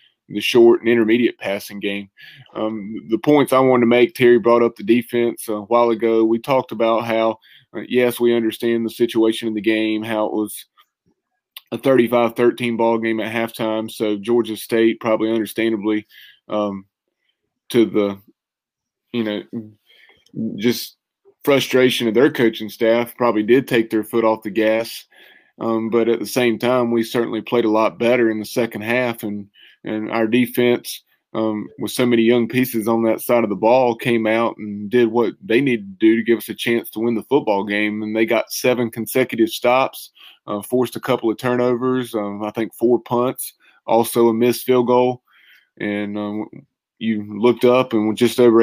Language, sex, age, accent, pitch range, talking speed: English, male, 20-39, American, 110-120 Hz, 185 wpm